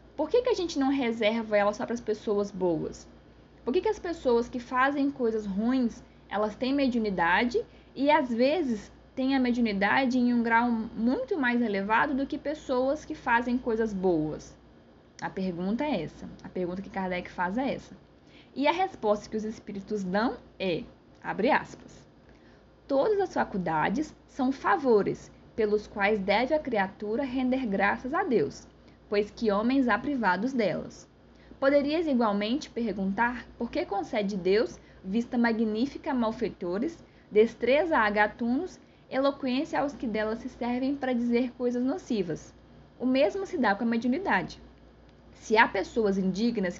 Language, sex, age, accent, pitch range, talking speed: Portuguese, female, 10-29, Brazilian, 210-270 Hz, 155 wpm